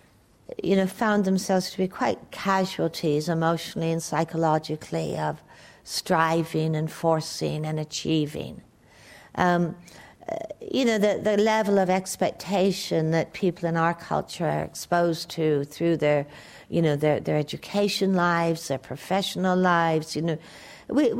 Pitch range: 160-195 Hz